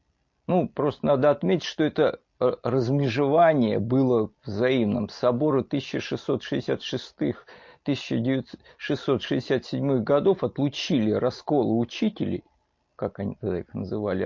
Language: Russian